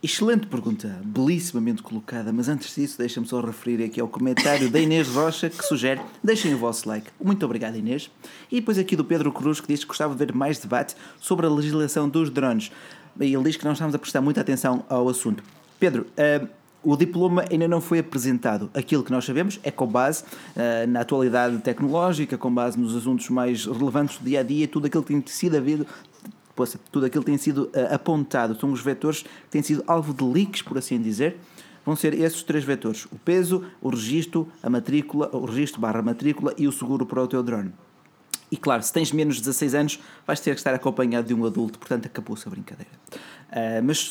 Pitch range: 125-160 Hz